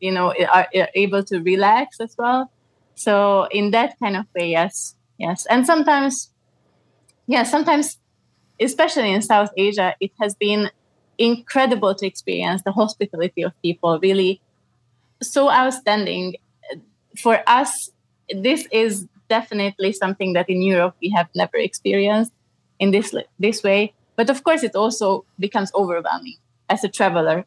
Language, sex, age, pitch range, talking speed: English, female, 20-39, 185-220 Hz, 140 wpm